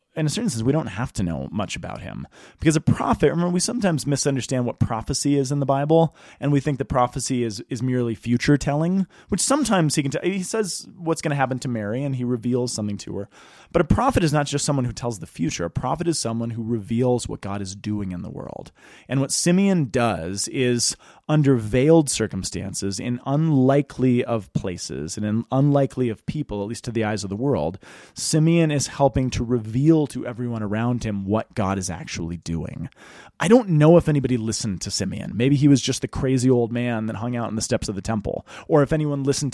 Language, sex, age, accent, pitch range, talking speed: English, male, 30-49, American, 110-145 Hz, 220 wpm